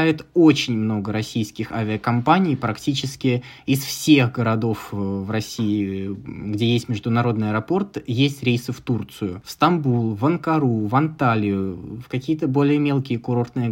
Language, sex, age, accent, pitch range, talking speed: Russian, male, 20-39, native, 115-145 Hz, 125 wpm